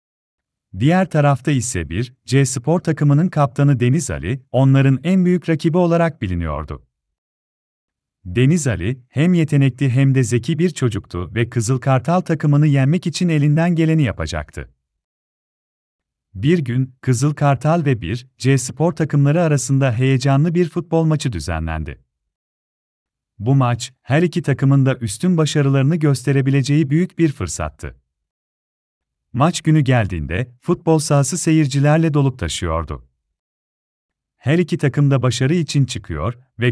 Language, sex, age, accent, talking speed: Turkish, male, 40-59, native, 120 wpm